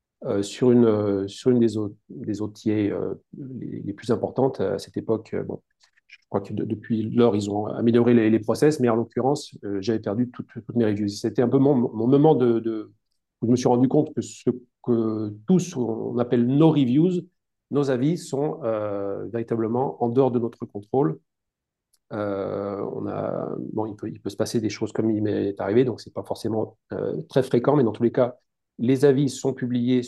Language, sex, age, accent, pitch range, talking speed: French, male, 40-59, French, 105-125 Hz, 215 wpm